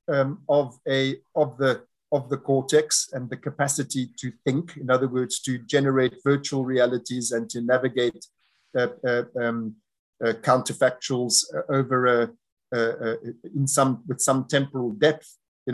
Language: English